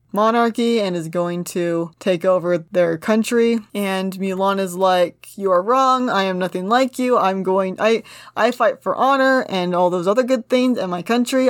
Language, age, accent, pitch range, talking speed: English, 20-39, American, 190-235 Hz, 195 wpm